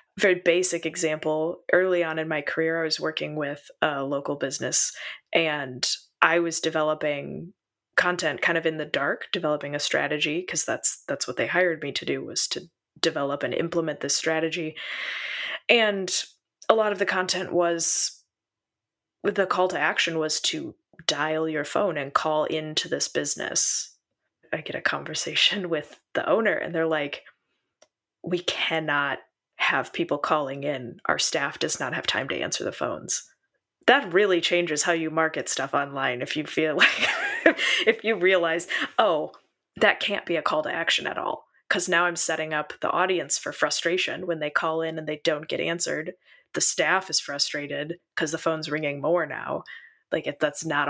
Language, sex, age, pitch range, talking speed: English, female, 20-39, 150-175 Hz, 175 wpm